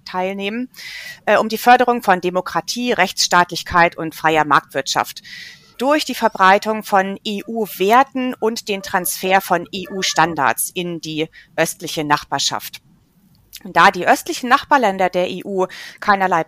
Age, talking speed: 30-49, 115 wpm